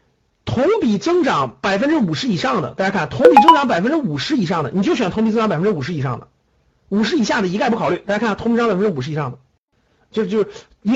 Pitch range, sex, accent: 180-280 Hz, male, native